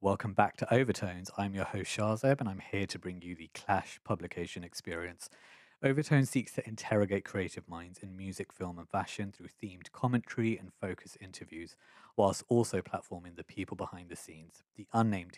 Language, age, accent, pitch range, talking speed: English, 20-39, British, 90-105 Hz, 175 wpm